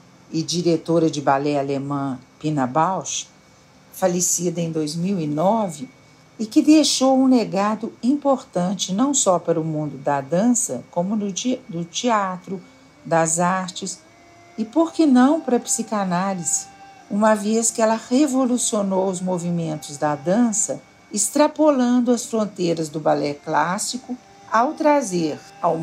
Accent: Brazilian